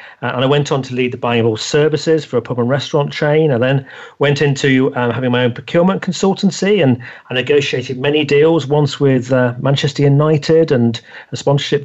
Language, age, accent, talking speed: English, 40-59, British, 205 wpm